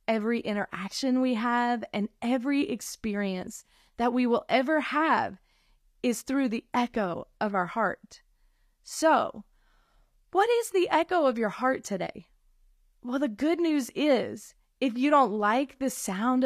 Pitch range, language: 210-270 Hz, English